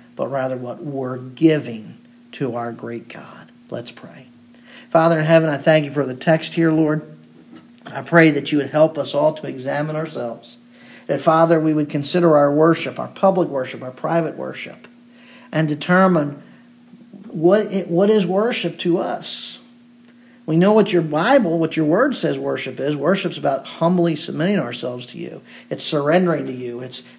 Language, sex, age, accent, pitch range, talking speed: English, male, 50-69, American, 140-185 Hz, 170 wpm